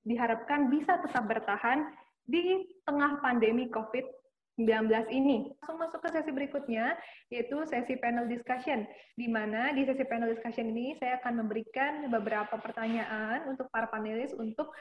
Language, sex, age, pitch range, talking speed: Indonesian, female, 20-39, 230-280 Hz, 135 wpm